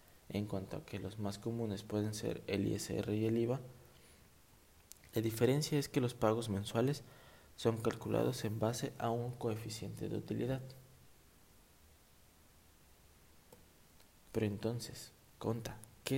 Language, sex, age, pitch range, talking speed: Spanish, male, 20-39, 95-115 Hz, 125 wpm